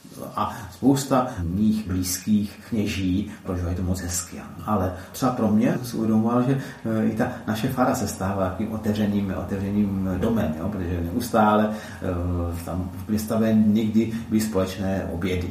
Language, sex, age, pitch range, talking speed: Czech, male, 40-59, 95-115 Hz, 130 wpm